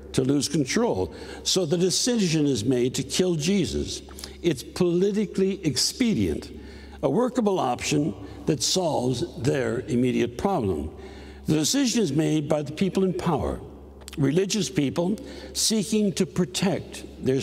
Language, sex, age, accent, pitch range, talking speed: English, male, 60-79, American, 125-190 Hz, 125 wpm